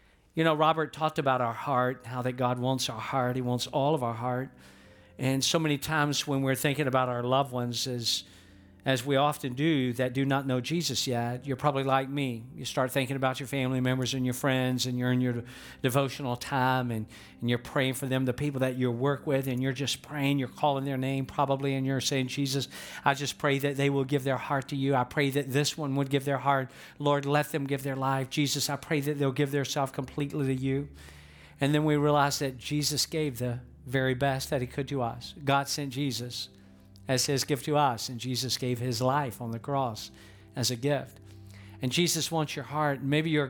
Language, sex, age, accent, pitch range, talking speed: English, male, 50-69, American, 125-145 Hz, 225 wpm